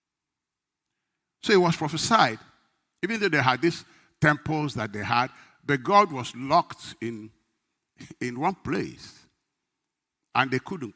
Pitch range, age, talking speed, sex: 115-155 Hz, 60-79, 130 wpm, male